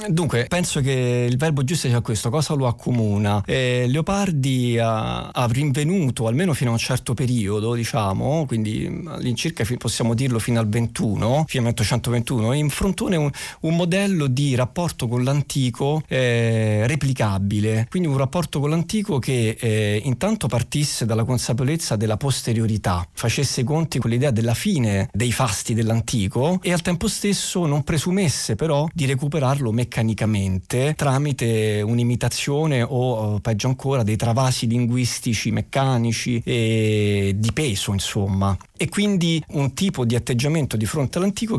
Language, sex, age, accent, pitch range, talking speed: Italian, male, 40-59, native, 115-145 Hz, 140 wpm